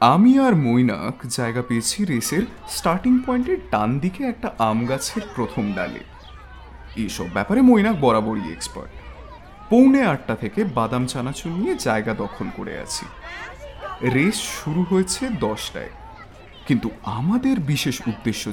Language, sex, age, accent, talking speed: Bengali, male, 30-49, native, 125 wpm